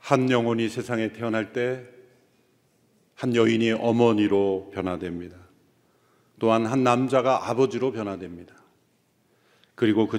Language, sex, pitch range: Korean, male, 100-135 Hz